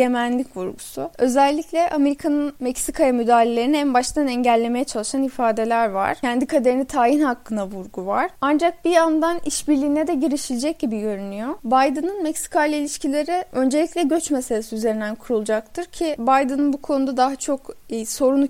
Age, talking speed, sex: 10-29, 135 wpm, female